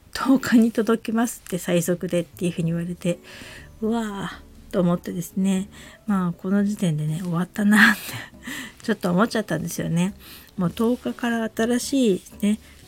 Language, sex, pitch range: Japanese, female, 175-245 Hz